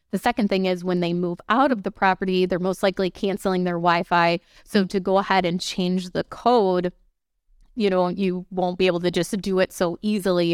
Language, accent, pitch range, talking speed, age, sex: English, American, 175-195 Hz, 210 wpm, 30-49, female